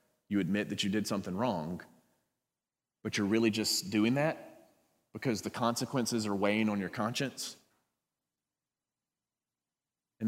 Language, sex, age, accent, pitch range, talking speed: English, male, 30-49, American, 110-145 Hz, 130 wpm